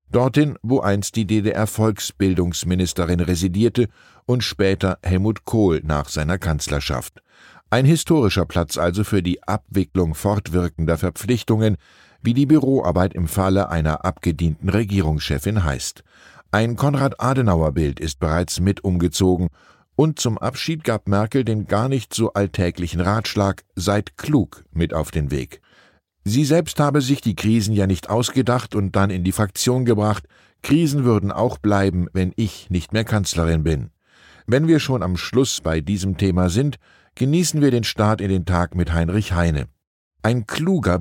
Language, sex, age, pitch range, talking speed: German, male, 10-29, 90-115 Hz, 145 wpm